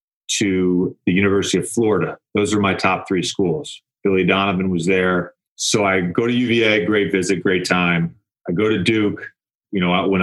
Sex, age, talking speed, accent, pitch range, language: male, 30-49, 180 wpm, American, 90-105 Hz, English